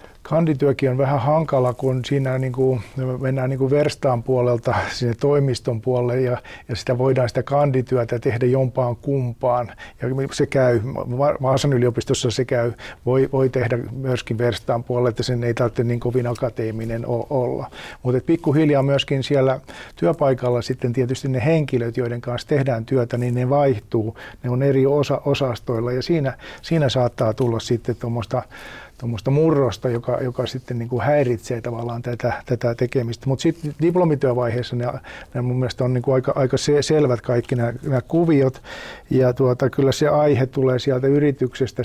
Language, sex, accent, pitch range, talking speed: Finnish, male, native, 120-135 Hz, 155 wpm